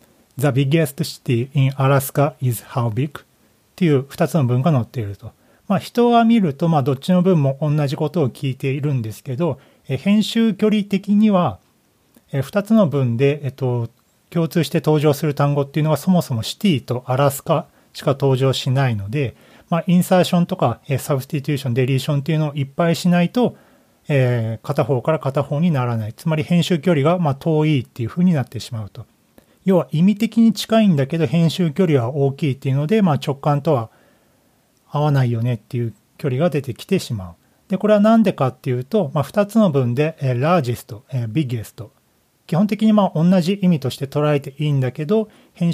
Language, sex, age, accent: Japanese, male, 40-59, native